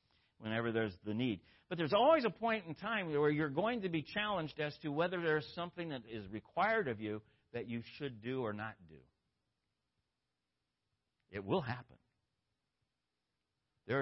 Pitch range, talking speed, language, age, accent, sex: 125-175 Hz, 165 wpm, English, 60-79, American, male